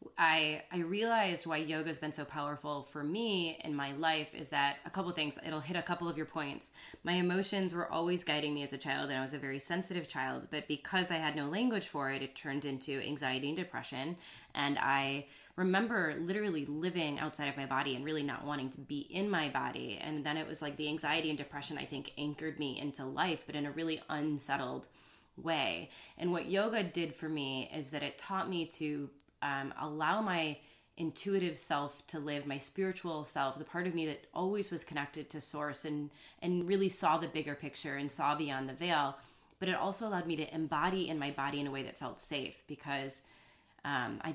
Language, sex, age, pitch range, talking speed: English, female, 20-39, 145-170 Hz, 215 wpm